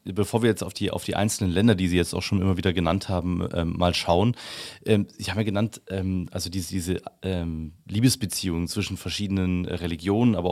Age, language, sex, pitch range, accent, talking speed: 30-49, German, male, 95-120 Hz, German, 200 wpm